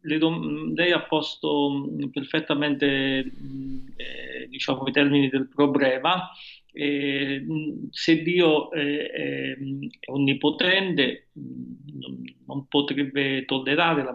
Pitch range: 125-150 Hz